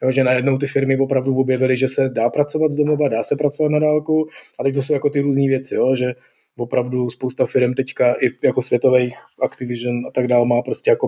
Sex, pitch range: male, 115-130 Hz